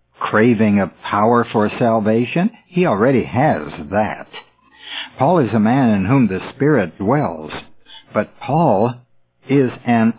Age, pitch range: 60-79, 95-135 Hz